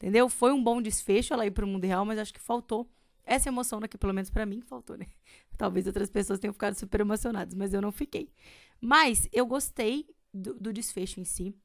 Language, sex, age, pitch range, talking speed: Portuguese, female, 20-39, 190-230 Hz, 215 wpm